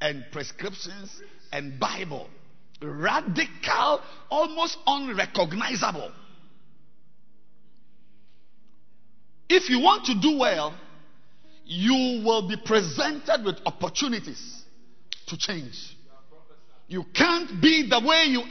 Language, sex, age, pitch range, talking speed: English, male, 50-69, 170-265 Hz, 90 wpm